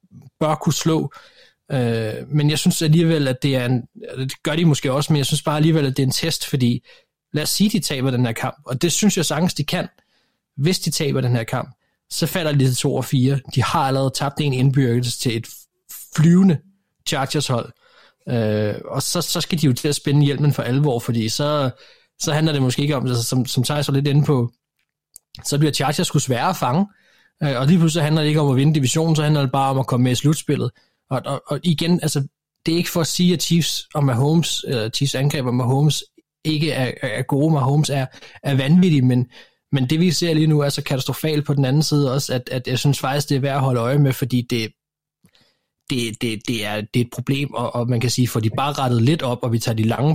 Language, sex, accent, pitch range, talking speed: Danish, male, native, 130-155 Hz, 245 wpm